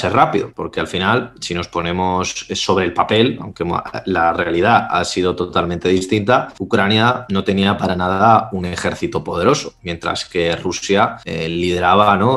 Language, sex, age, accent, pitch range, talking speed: Spanish, male, 20-39, Spanish, 90-115 Hz, 150 wpm